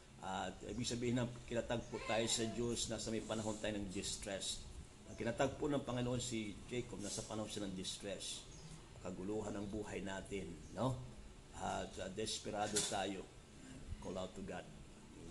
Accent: native